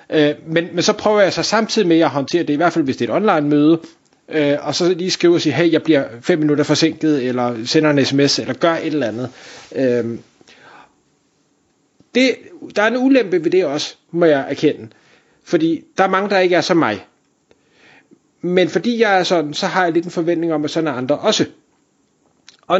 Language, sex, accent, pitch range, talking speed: Danish, male, native, 150-205 Hz, 210 wpm